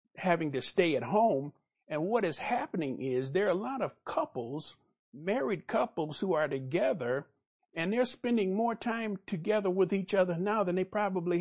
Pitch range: 150-205 Hz